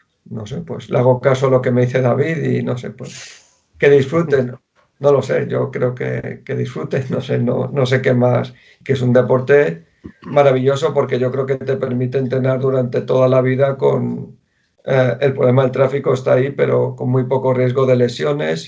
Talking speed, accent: 210 wpm, Spanish